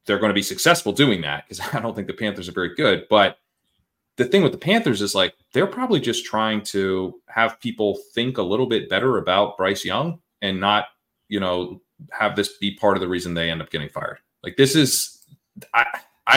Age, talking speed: 30-49, 215 wpm